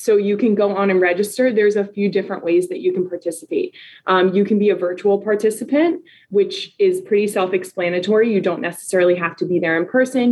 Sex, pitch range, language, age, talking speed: female, 175-210 Hz, English, 20-39, 210 wpm